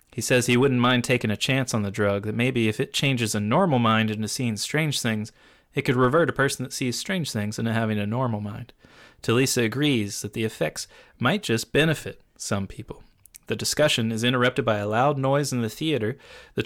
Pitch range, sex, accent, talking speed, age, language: 110-125 Hz, male, American, 215 wpm, 30-49, English